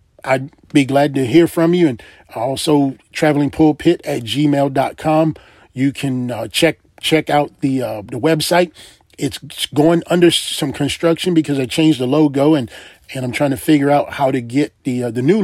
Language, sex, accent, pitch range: English, male, American, 120-150 Hz